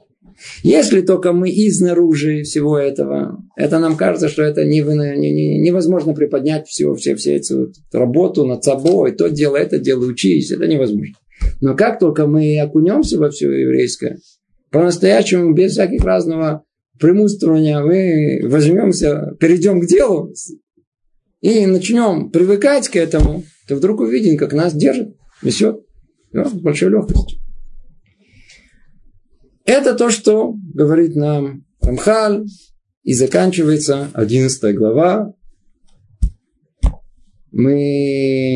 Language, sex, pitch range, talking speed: Russian, male, 130-175 Hz, 105 wpm